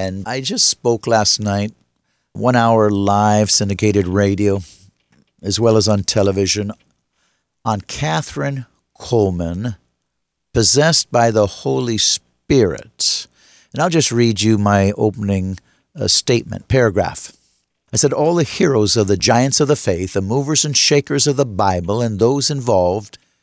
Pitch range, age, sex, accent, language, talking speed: 95-135 Hz, 50-69, male, American, English, 140 wpm